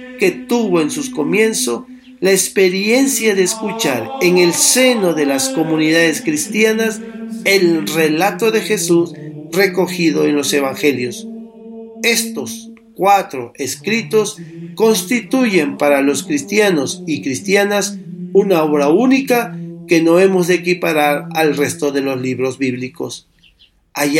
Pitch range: 160-215 Hz